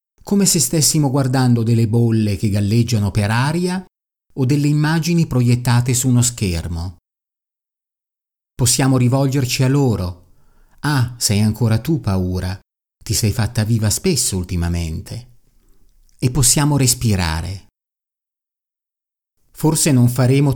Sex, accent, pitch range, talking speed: male, native, 105-135 Hz, 110 wpm